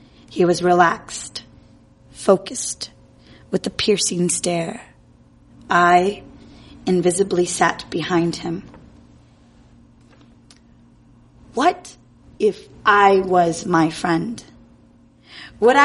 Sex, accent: female, American